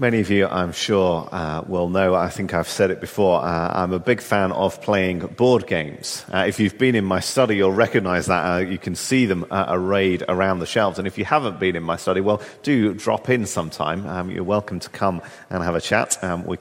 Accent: British